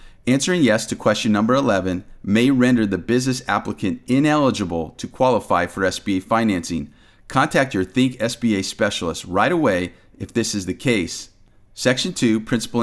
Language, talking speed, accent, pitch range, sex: English, 150 wpm, American, 95-125 Hz, male